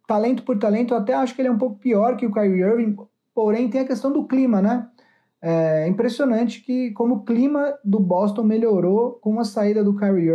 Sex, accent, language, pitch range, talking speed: male, Brazilian, Portuguese, 180-230 Hz, 215 wpm